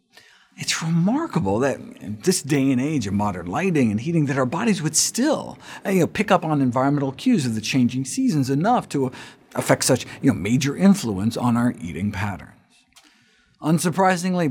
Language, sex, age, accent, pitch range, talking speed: English, male, 50-69, American, 120-185 Hz, 155 wpm